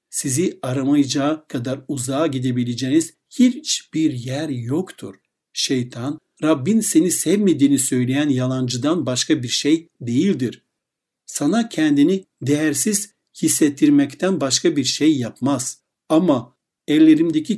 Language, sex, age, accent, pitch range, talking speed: Turkish, male, 60-79, native, 135-195 Hz, 95 wpm